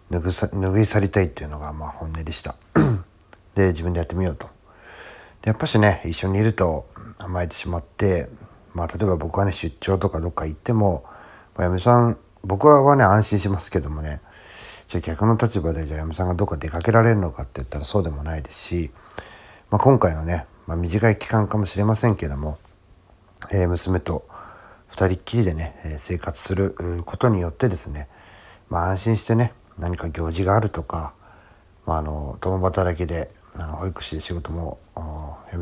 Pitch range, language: 85-105 Hz, Japanese